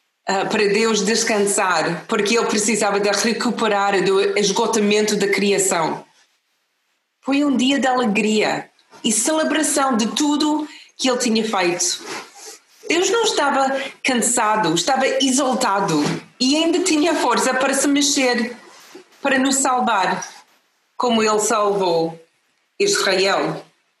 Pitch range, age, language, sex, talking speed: 200-255 Hz, 30-49, Portuguese, female, 115 wpm